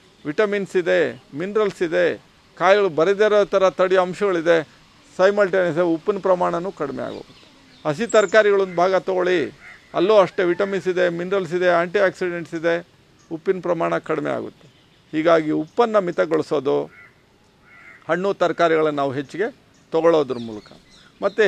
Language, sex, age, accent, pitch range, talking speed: Kannada, male, 50-69, native, 165-195 Hz, 115 wpm